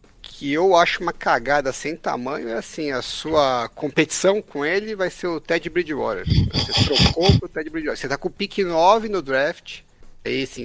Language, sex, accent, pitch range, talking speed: Portuguese, male, Brazilian, 130-190 Hz, 195 wpm